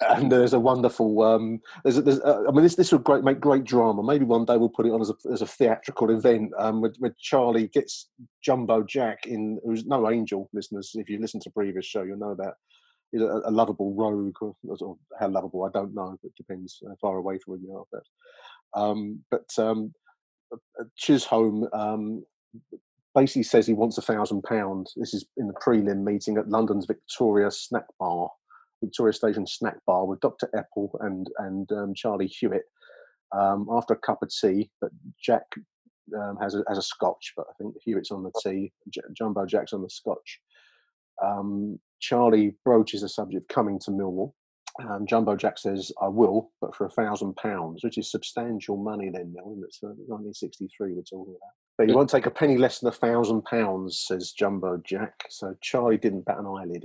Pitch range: 100-120 Hz